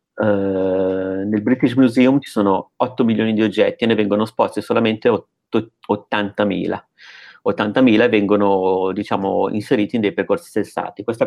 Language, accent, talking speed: Italian, native, 145 wpm